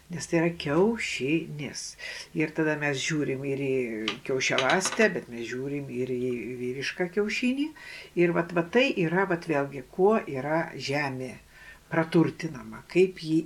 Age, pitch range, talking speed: 60-79, 145-190 Hz, 140 wpm